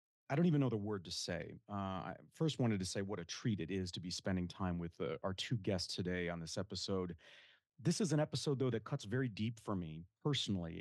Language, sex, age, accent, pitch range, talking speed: English, male, 30-49, American, 95-120 Hz, 245 wpm